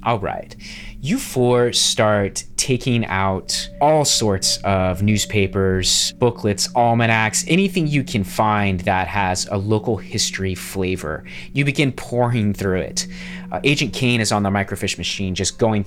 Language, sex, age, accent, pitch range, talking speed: English, male, 20-39, American, 95-120 Hz, 145 wpm